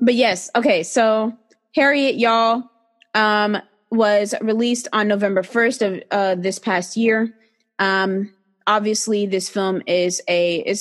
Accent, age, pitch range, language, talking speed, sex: American, 20-39, 190-245 Hz, English, 130 wpm, female